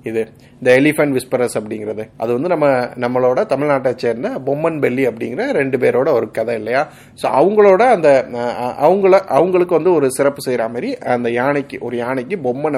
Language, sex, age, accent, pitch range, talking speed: Tamil, male, 30-49, native, 120-145 Hz, 160 wpm